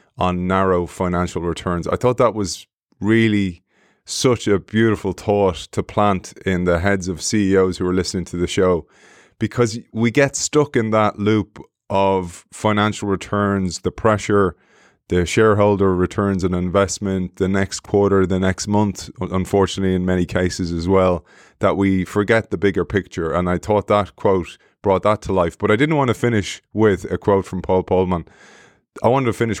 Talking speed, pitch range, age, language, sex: 175 wpm, 90-110 Hz, 20-39, English, male